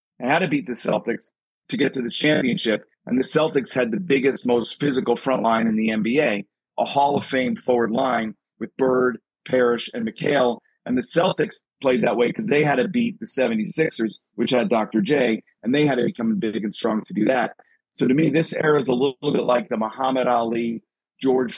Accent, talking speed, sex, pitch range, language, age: American, 215 wpm, male, 115-145 Hz, English, 40-59